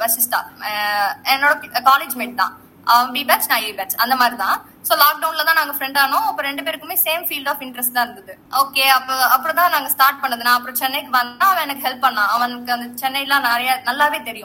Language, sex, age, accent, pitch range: Tamil, female, 20-39, native, 245-310 Hz